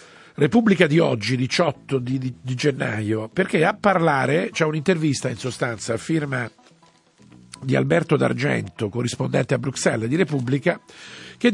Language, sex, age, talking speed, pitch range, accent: Italian, male, 50-69, 135 wpm, 130-185 Hz, native